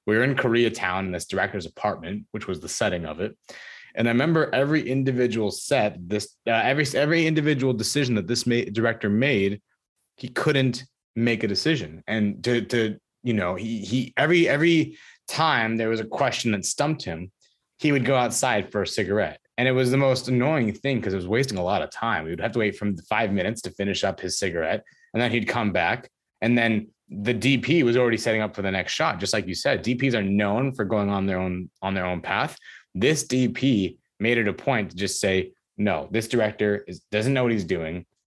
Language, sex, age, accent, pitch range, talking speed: English, male, 30-49, American, 100-125 Hz, 215 wpm